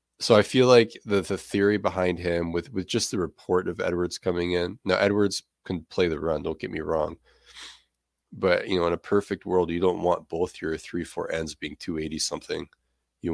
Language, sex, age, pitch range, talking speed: English, male, 20-39, 80-100 Hz, 210 wpm